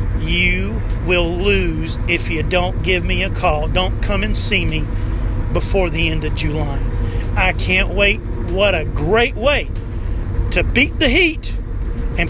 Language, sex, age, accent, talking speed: English, male, 40-59, American, 155 wpm